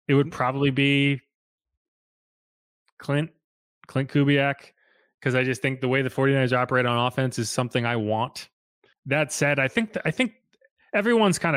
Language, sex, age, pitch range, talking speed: English, male, 20-39, 120-160 Hz, 155 wpm